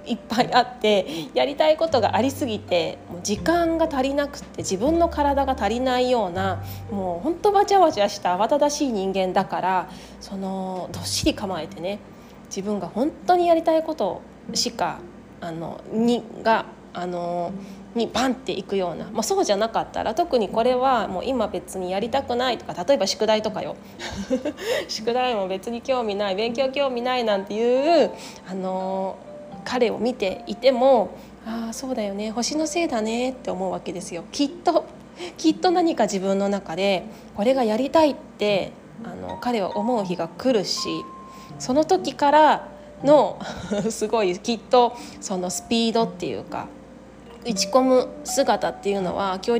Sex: female